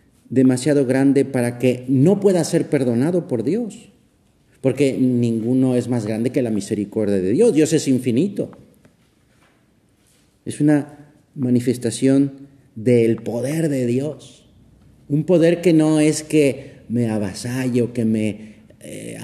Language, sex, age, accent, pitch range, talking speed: Spanish, male, 40-59, Mexican, 110-155 Hz, 130 wpm